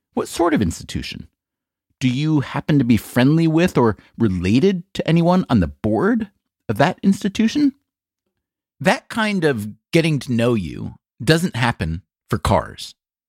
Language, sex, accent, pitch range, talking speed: English, male, American, 110-155 Hz, 145 wpm